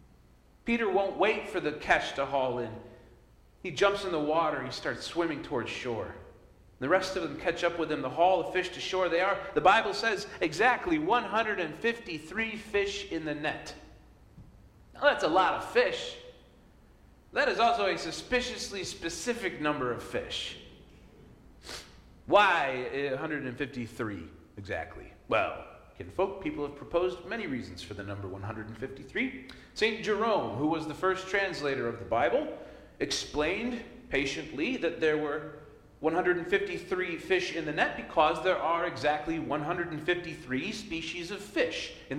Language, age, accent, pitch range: English, 40-59, American, 125-195 Hz